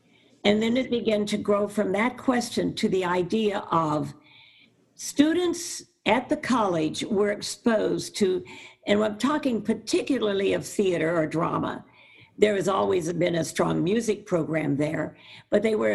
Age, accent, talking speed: 50-69, American, 150 wpm